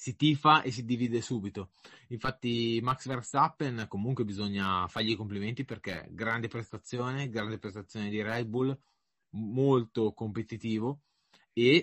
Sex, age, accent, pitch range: male, 20-39, native, 100-125 Hz